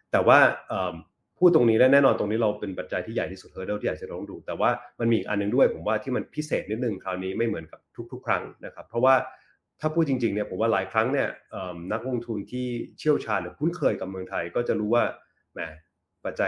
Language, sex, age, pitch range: Thai, male, 30-49, 95-120 Hz